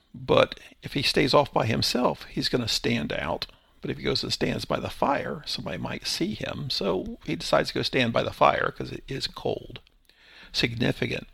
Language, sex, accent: English, male, American